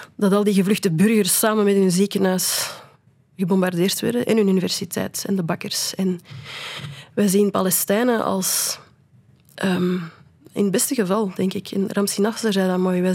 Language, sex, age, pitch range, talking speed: Dutch, female, 20-39, 185-215 Hz, 160 wpm